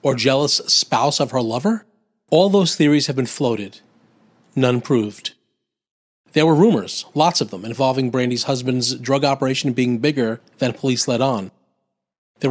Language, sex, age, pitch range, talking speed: English, male, 40-59, 125-160 Hz, 155 wpm